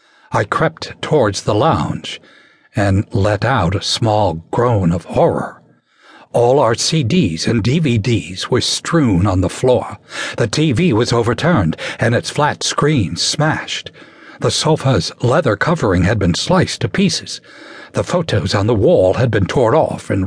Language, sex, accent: English, male, American